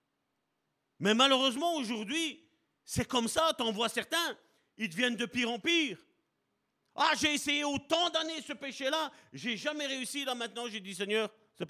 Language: French